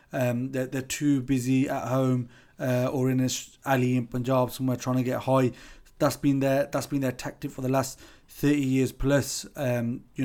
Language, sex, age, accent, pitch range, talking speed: English, male, 20-39, British, 125-135 Hz, 200 wpm